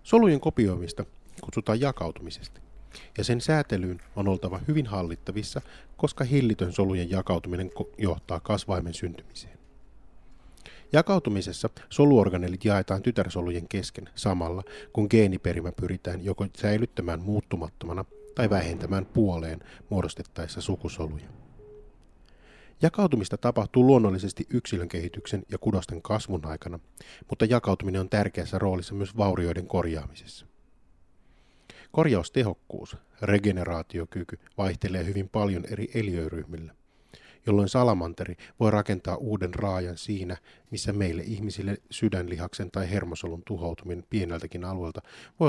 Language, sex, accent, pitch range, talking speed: Finnish, male, native, 90-110 Hz, 100 wpm